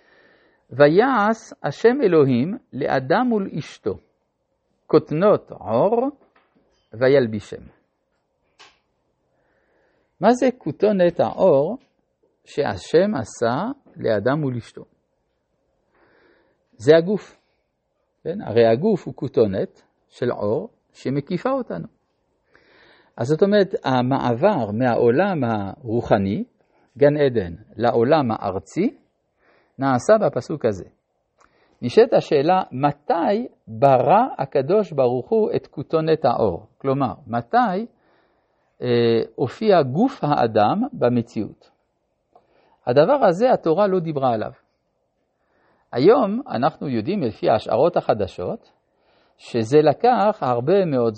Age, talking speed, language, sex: 50-69, 90 wpm, Hebrew, male